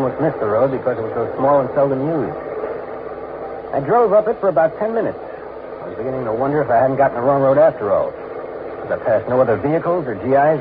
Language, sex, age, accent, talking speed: English, male, 60-79, American, 240 wpm